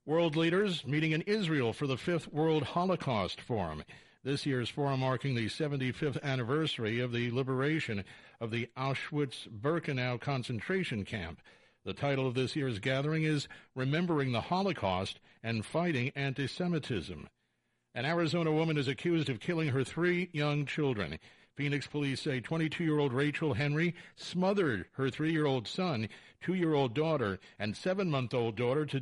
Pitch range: 125-155 Hz